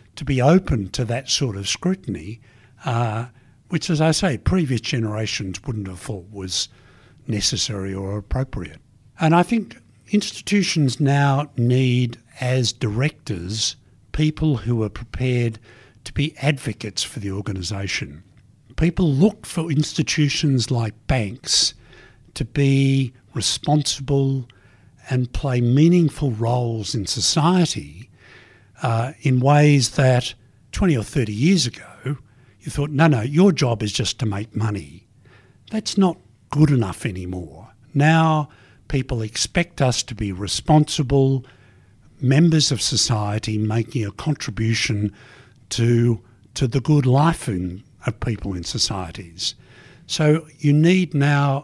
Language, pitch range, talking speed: English, 110-145 Hz, 125 wpm